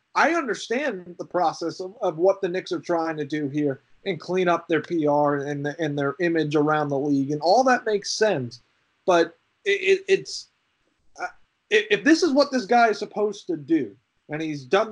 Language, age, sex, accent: English, 30-49, male, American